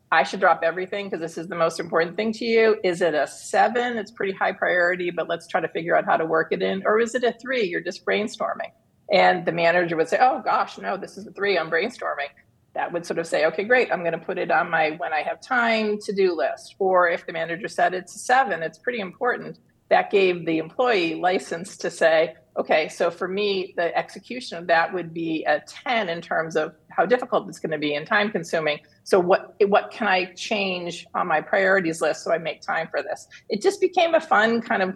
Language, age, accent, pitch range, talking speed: English, 40-59, American, 165-215 Hz, 235 wpm